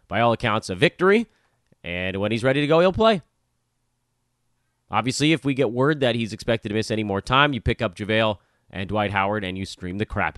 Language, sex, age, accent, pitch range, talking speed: English, male, 30-49, American, 100-145 Hz, 220 wpm